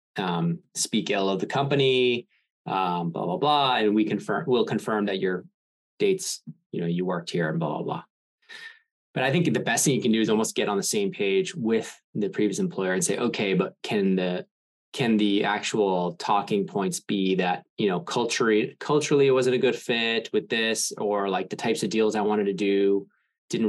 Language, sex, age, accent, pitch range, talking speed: English, male, 20-39, American, 100-150 Hz, 210 wpm